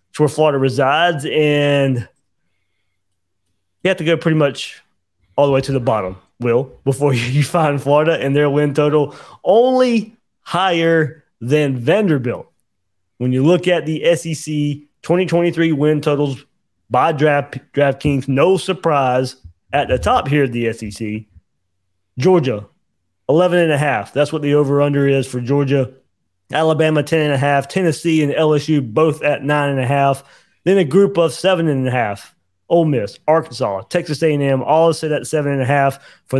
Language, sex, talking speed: English, male, 155 wpm